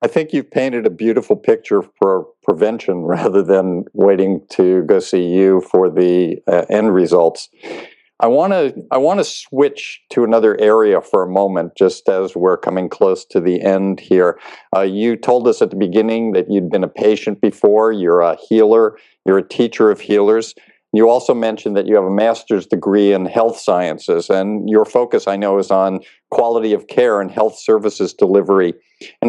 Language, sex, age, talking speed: English, male, 50-69, 180 wpm